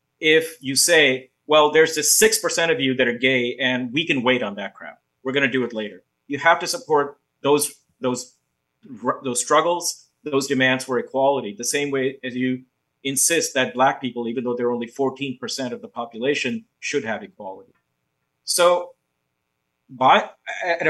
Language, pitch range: English, 125-160 Hz